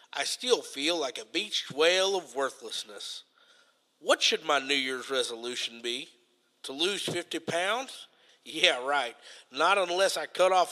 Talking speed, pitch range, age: 150 wpm, 140-230 Hz, 50-69